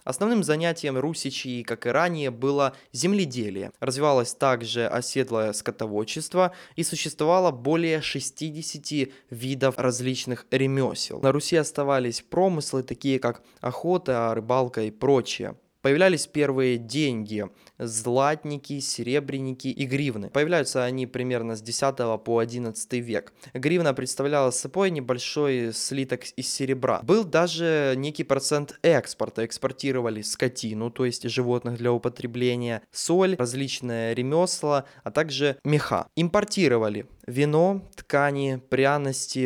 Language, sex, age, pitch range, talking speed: Russian, male, 20-39, 120-150 Hz, 115 wpm